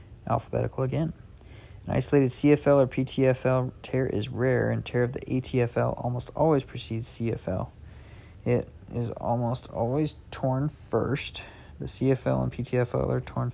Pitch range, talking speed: 115-135 Hz, 135 wpm